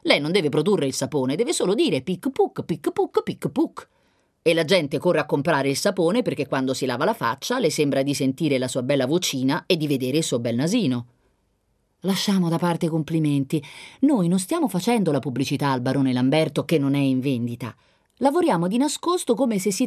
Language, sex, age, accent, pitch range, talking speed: Italian, female, 30-49, native, 140-205 Hz, 205 wpm